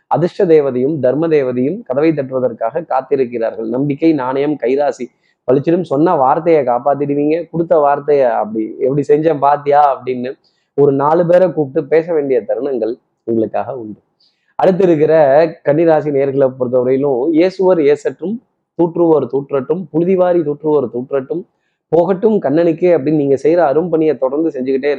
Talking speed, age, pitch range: 120 wpm, 20-39, 135-170 Hz